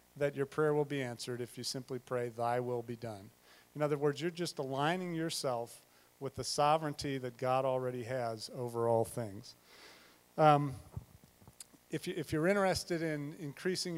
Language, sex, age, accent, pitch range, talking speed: English, male, 40-59, American, 120-155 Hz, 165 wpm